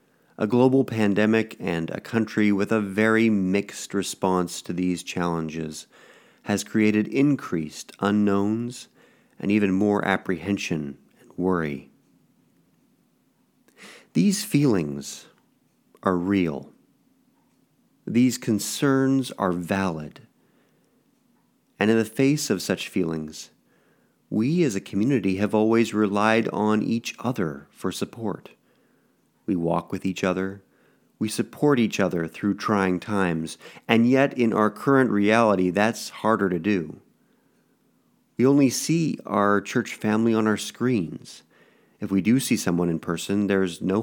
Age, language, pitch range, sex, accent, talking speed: 40-59, English, 90-110 Hz, male, American, 125 wpm